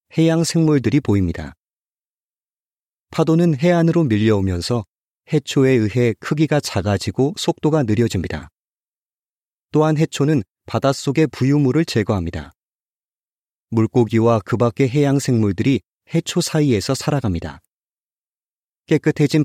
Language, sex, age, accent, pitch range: Korean, male, 30-49, native, 105-145 Hz